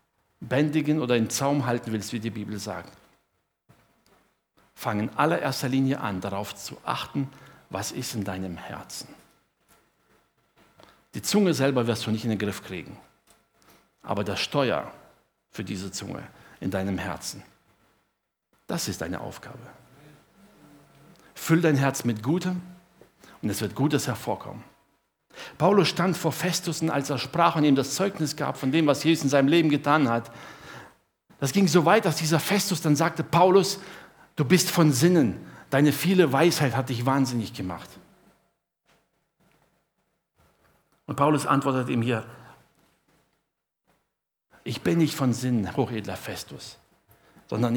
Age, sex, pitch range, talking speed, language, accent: 60-79, male, 110-160 Hz, 140 wpm, German, German